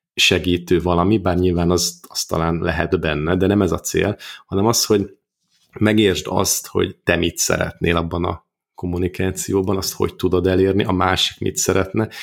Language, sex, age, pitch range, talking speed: Hungarian, male, 30-49, 85-100 Hz, 165 wpm